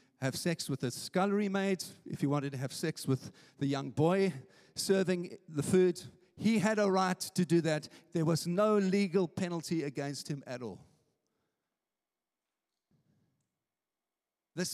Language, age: English, 50-69